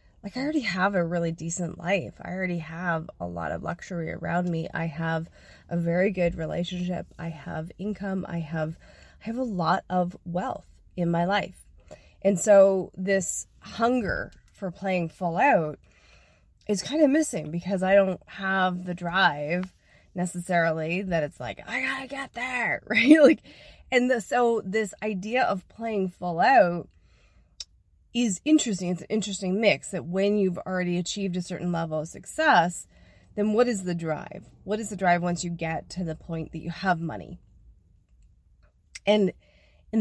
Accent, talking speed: American, 165 wpm